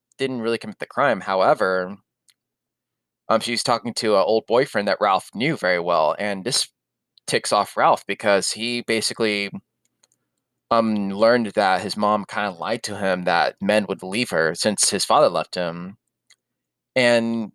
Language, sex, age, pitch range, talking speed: English, male, 20-39, 100-120 Hz, 160 wpm